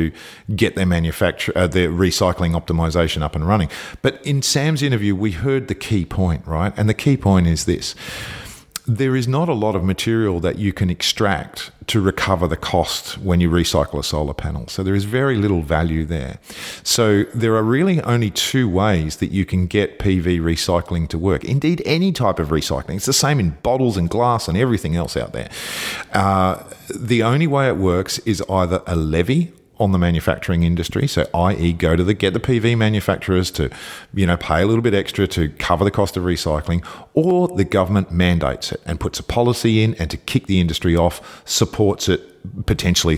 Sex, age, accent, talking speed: male, 40-59, Australian, 195 wpm